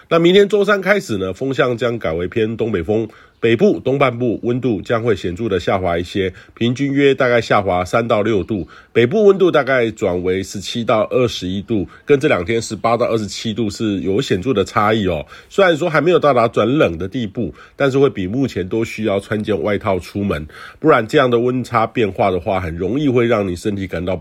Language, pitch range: Chinese, 95-125 Hz